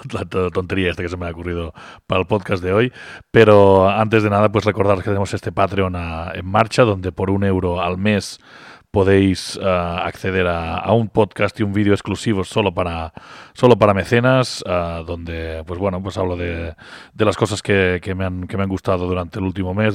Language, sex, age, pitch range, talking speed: Spanish, male, 30-49, 90-105 Hz, 210 wpm